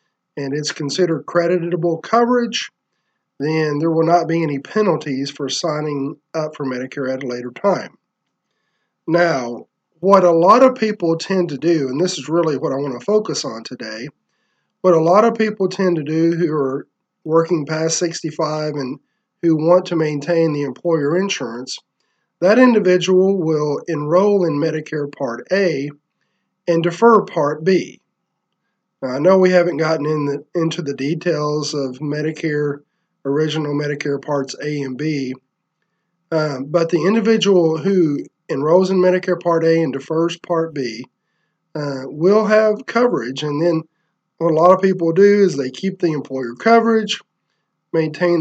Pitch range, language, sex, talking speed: 145-180 Hz, English, male, 150 wpm